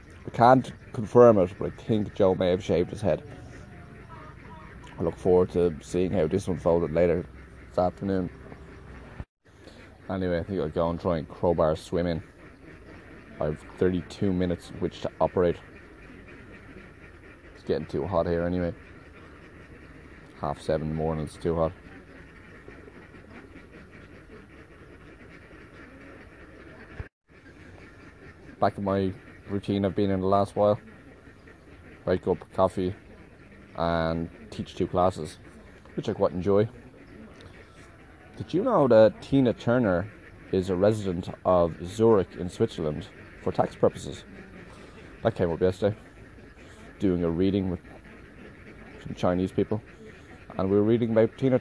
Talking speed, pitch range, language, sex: 130 wpm, 85-105 Hz, English, male